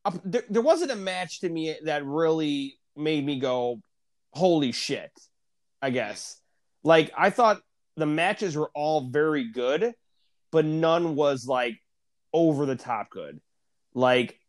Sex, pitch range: male, 135-200 Hz